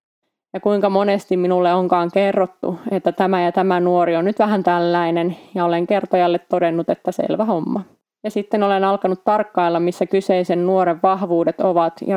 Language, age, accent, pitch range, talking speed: Finnish, 20-39, native, 175-195 Hz, 165 wpm